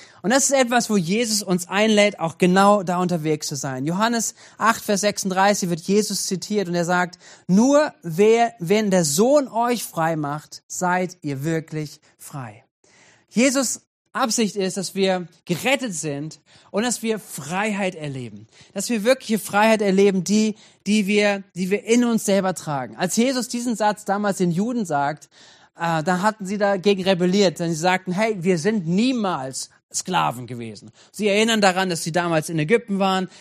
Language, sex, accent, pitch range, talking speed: German, male, German, 175-220 Hz, 170 wpm